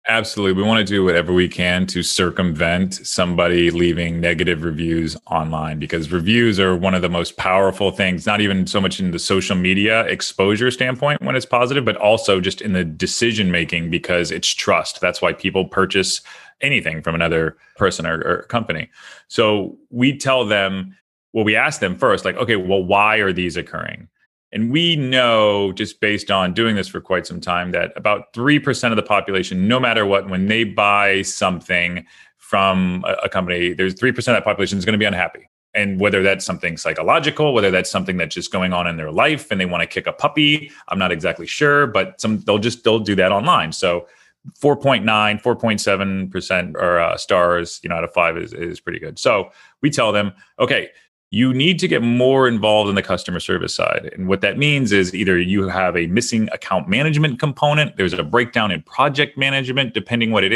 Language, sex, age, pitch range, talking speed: English, male, 30-49, 90-120 Hz, 195 wpm